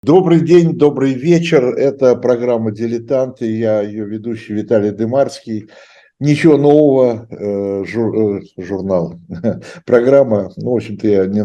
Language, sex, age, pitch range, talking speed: Russian, male, 60-79, 100-125 Hz, 115 wpm